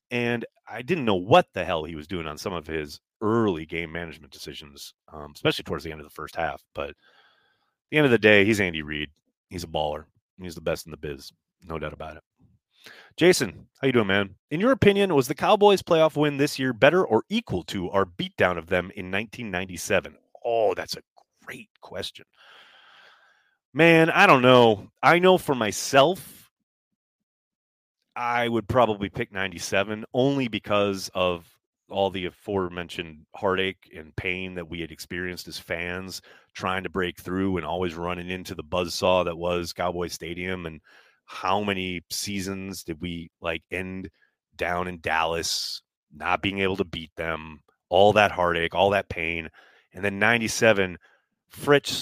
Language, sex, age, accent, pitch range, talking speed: English, male, 30-49, American, 85-110 Hz, 170 wpm